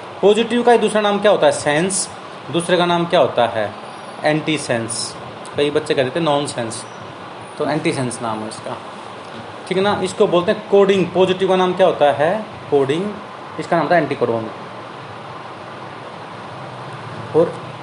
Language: Hindi